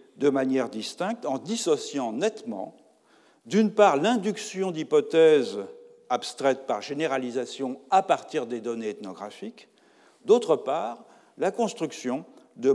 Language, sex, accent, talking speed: French, male, French, 110 wpm